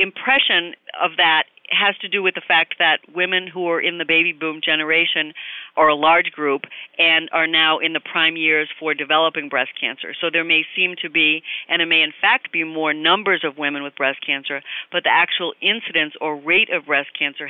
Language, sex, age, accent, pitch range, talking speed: English, female, 50-69, American, 150-180 Hz, 210 wpm